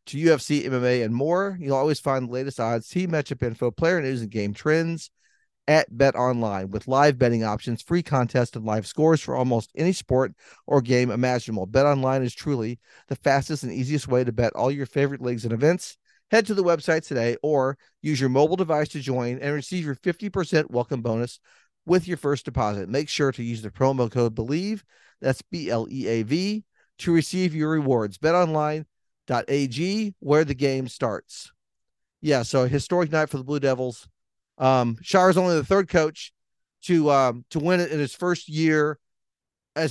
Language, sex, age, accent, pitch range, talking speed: English, male, 50-69, American, 120-155 Hz, 180 wpm